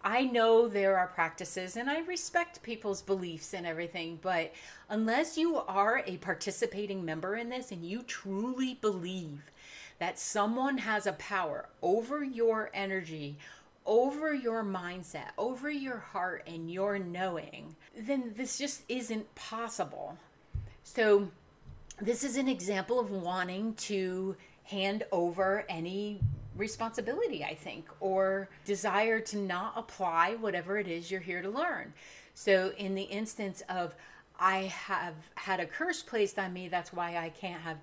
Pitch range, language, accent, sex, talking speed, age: 180-230 Hz, English, American, female, 145 wpm, 30-49